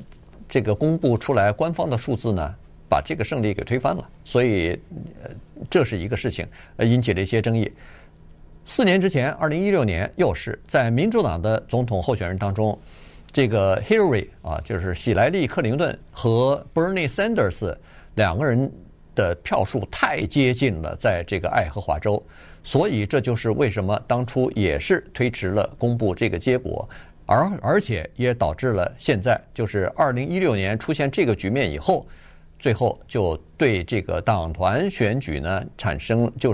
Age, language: 50-69, Chinese